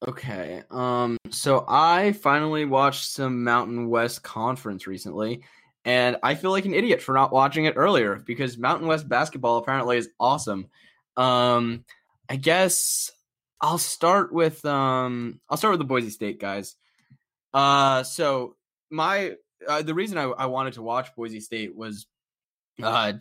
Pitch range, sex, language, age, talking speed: 110-140 Hz, male, English, 20-39, 150 wpm